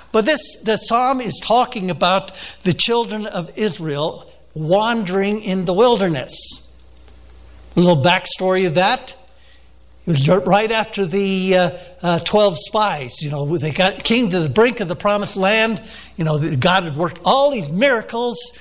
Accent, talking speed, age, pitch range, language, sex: American, 160 wpm, 60-79, 160-215 Hz, English, male